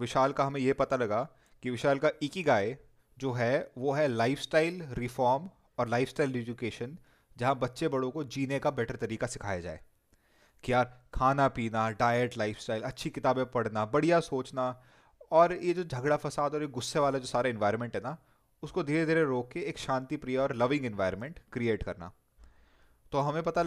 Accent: native